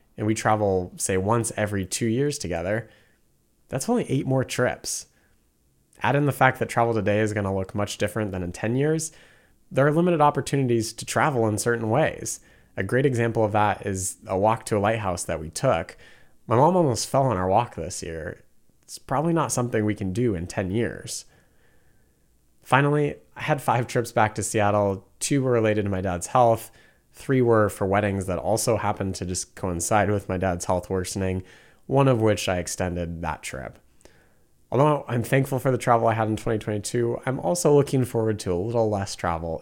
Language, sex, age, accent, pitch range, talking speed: English, male, 30-49, American, 95-125 Hz, 195 wpm